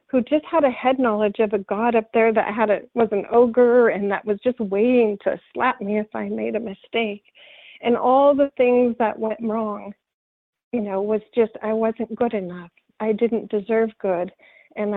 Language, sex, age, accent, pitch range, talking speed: English, female, 40-59, American, 210-250 Hz, 200 wpm